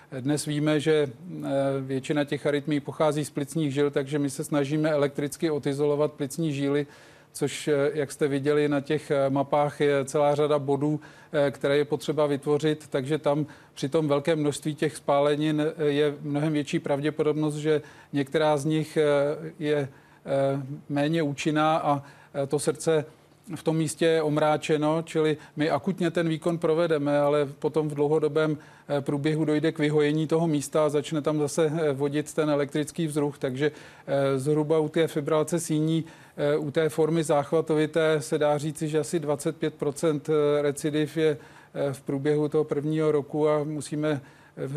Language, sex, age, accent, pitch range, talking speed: Czech, male, 40-59, native, 145-155 Hz, 145 wpm